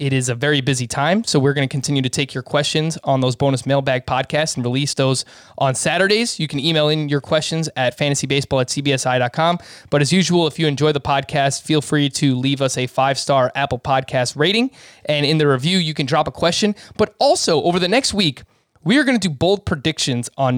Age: 20-39